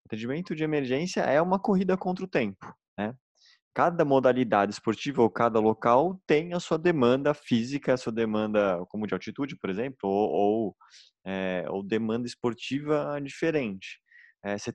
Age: 20-39